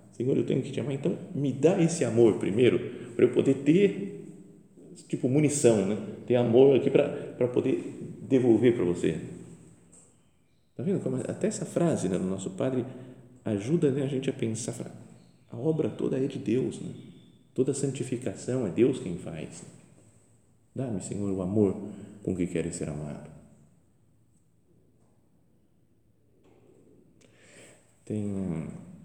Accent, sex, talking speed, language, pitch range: Brazilian, male, 135 wpm, Portuguese, 90-140 Hz